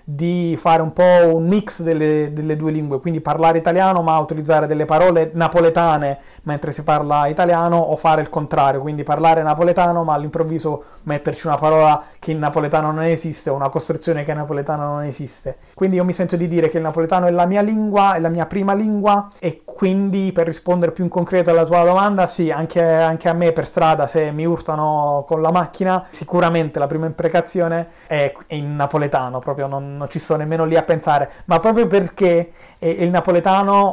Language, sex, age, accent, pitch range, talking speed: Italian, male, 30-49, native, 155-175 Hz, 195 wpm